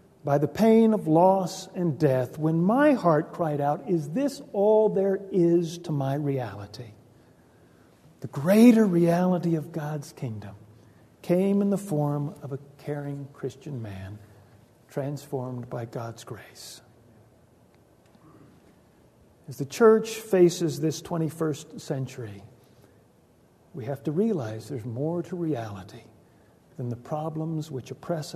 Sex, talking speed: male, 125 wpm